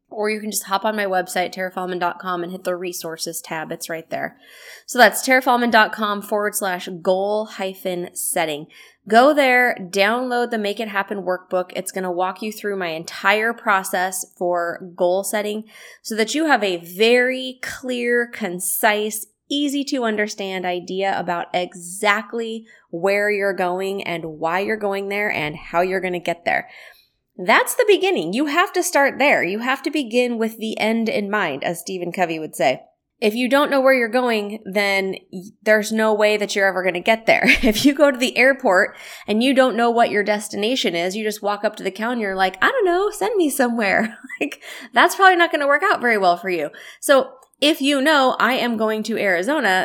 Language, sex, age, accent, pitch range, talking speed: English, female, 20-39, American, 185-240 Hz, 200 wpm